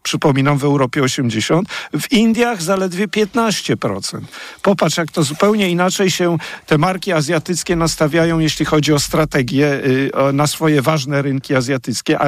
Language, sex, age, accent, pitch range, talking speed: Polish, male, 50-69, native, 145-185 Hz, 135 wpm